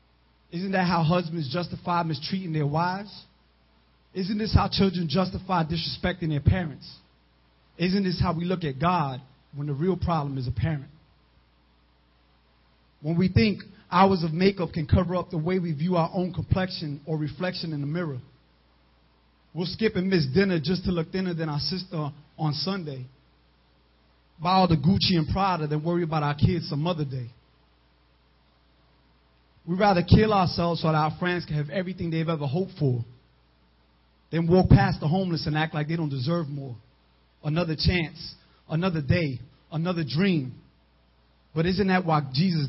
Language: English